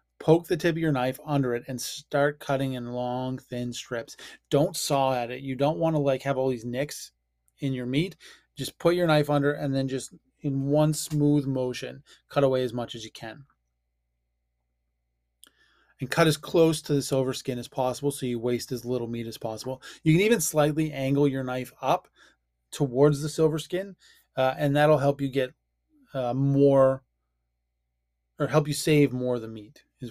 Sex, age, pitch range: male, 20-39, 120-145 Hz